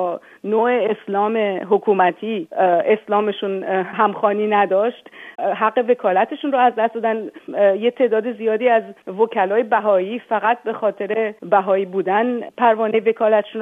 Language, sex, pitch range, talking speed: Persian, female, 200-235 Hz, 110 wpm